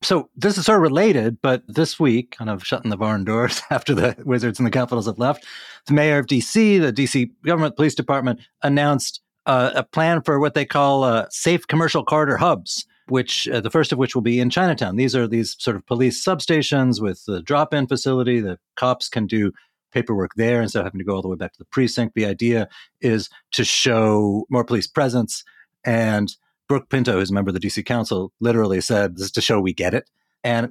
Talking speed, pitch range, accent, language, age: 220 wpm, 100-130 Hz, American, English, 40-59